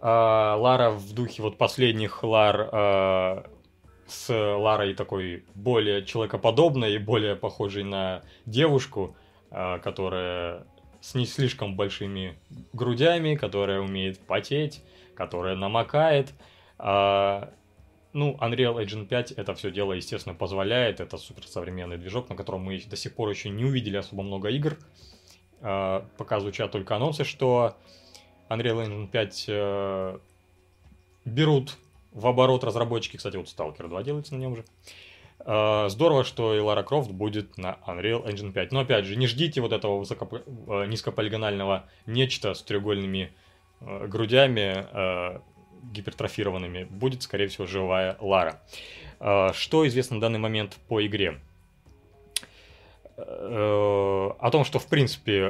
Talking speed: 130 wpm